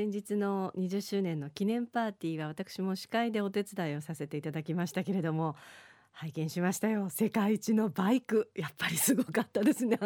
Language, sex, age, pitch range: Japanese, female, 40-59, 175-265 Hz